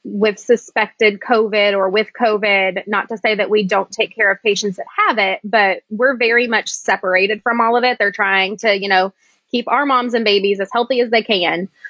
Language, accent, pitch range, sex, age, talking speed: English, American, 195-230 Hz, female, 20-39, 215 wpm